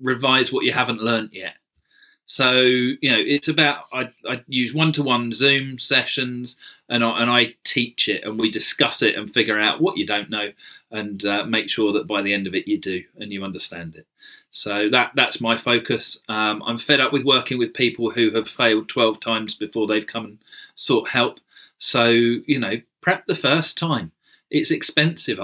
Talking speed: 195 wpm